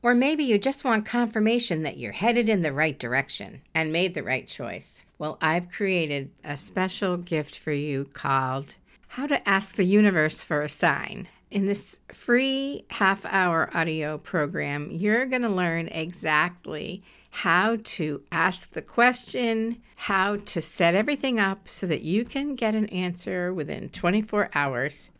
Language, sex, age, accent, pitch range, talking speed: English, female, 50-69, American, 150-210 Hz, 155 wpm